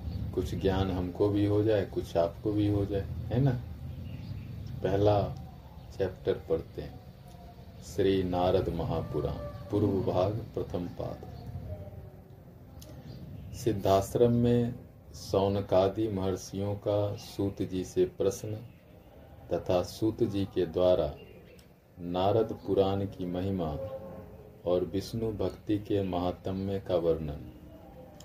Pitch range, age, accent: 90-110 Hz, 40-59, native